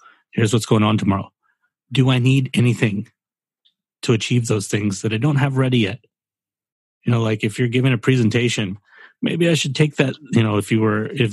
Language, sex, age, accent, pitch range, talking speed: English, male, 30-49, American, 110-140 Hz, 205 wpm